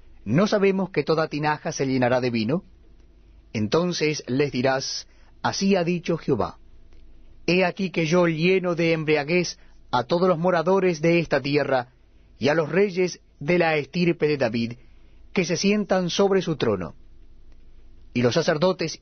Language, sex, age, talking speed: Spanish, male, 40-59, 150 wpm